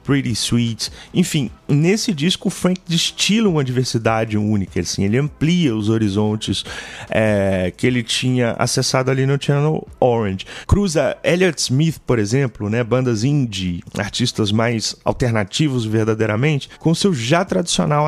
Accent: Brazilian